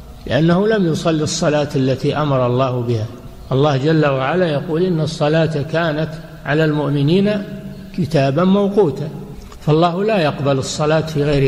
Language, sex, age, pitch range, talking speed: Arabic, male, 60-79, 140-175 Hz, 130 wpm